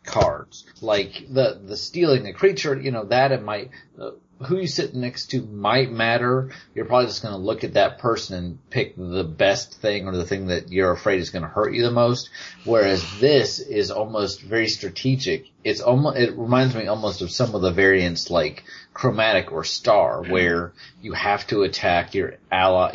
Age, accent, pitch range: 30-49, American, 90-125 Hz